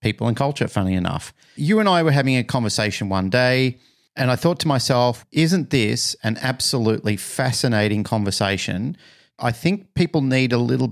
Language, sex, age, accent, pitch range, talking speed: English, male, 40-59, Australian, 105-130 Hz, 170 wpm